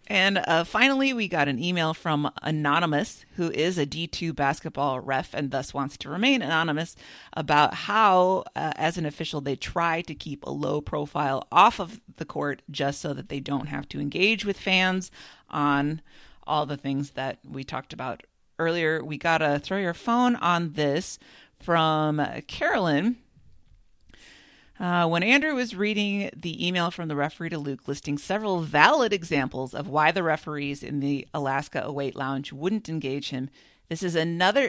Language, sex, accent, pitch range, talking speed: English, female, American, 145-185 Hz, 170 wpm